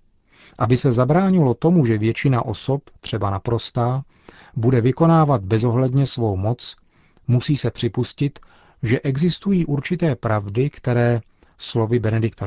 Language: Czech